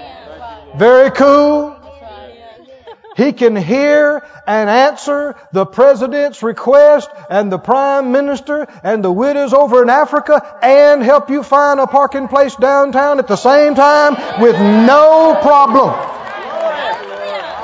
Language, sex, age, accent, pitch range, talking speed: English, male, 40-59, American, 195-280 Hz, 120 wpm